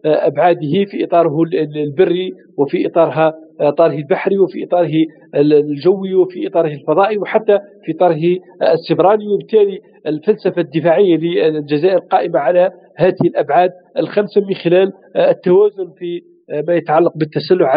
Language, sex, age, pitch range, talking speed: Arabic, male, 50-69, 155-180 Hz, 115 wpm